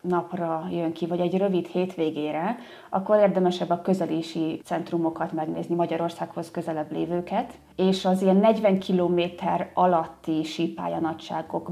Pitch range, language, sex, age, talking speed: 170-190 Hz, Hungarian, female, 30-49, 125 wpm